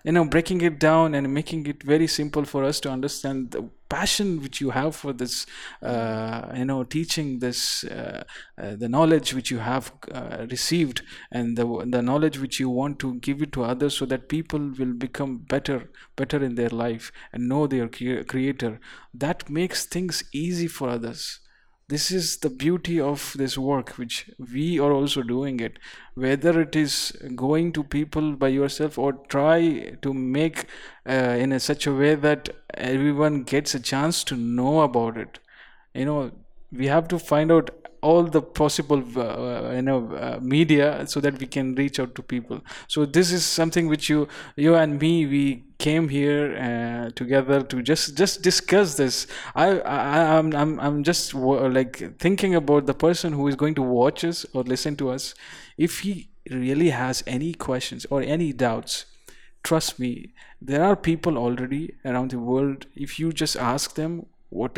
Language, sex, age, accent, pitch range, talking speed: English, male, 50-69, Indian, 130-155 Hz, 180 wpm